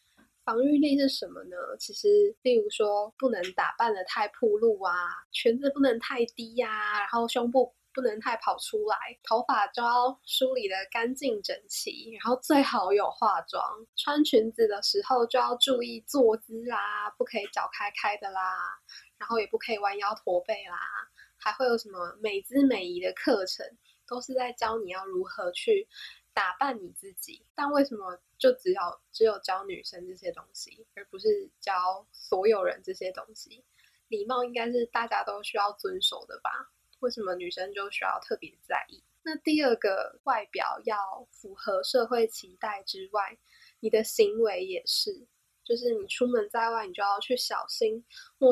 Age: 10-29